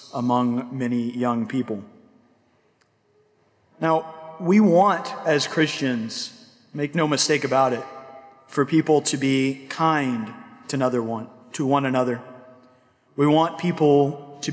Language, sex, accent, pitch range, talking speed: English, male, American, 135-175 Hz, 115 wpm